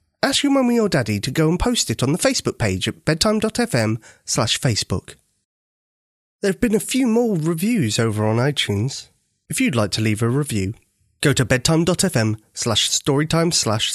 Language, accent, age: English, British, 30-49